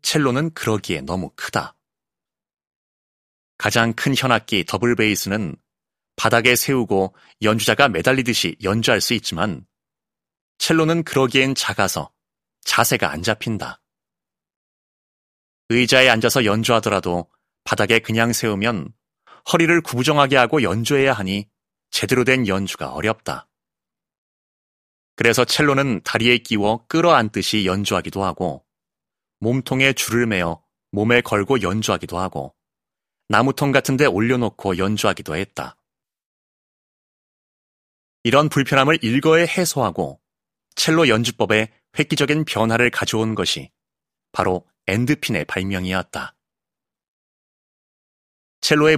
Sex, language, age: male, Korean, 30-49